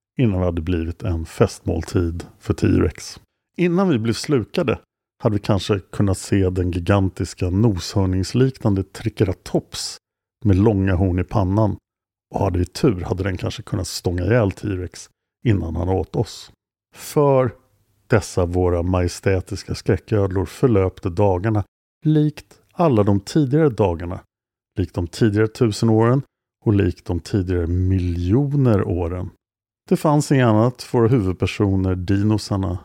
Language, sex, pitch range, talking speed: Swedish, male, 95-115 Hz, 130 wpm